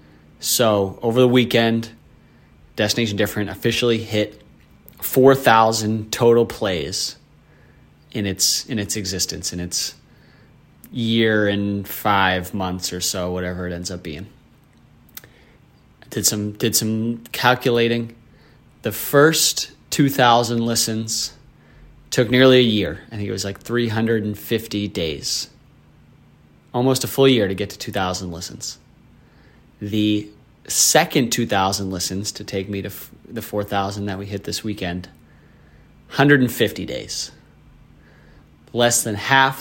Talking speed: 120 wpm